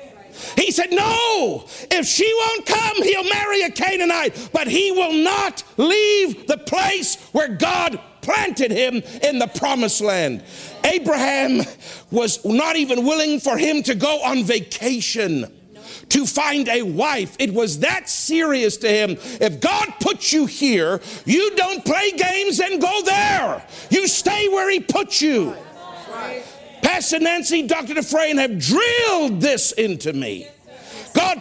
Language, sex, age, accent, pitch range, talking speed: English, male, 50-69, American, 250-360 Hz, 145 wpm